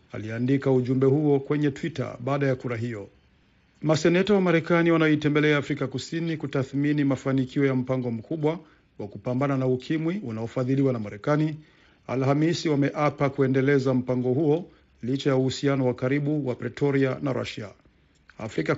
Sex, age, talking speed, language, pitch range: male, 50-69, 130 wpm, Swahili, 130-150 Hz